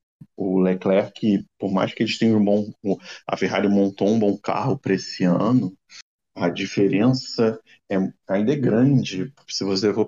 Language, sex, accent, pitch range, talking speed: Portuguese, male, Brazilian, 100-135 Hz, 160 wpm